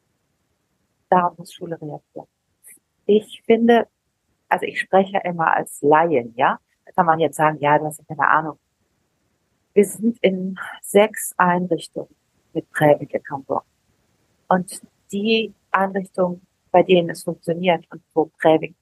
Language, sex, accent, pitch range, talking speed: German, female, German, 160-195 Hz, 135 wpm